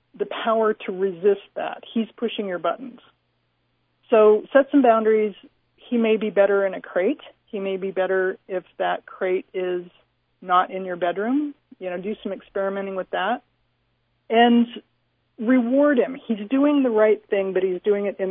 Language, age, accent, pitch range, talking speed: English, 40-59, American, 195-260 Hz, 170 wpm